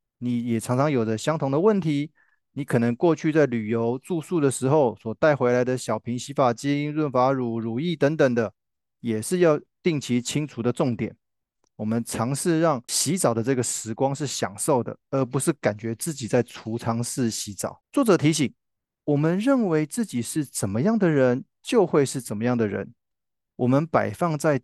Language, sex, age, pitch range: Chinese, male, 20-39, 120-160 Hz